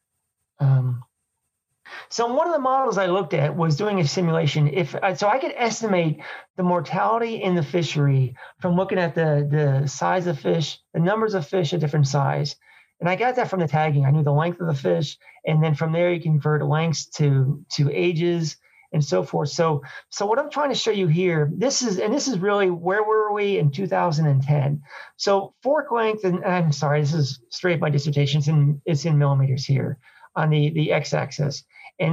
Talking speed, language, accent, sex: 205 wpm, English, American, male